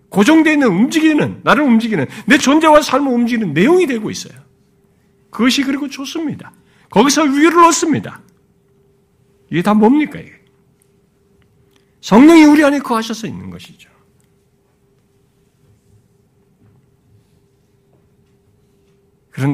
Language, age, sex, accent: Korean, 50-69, male, native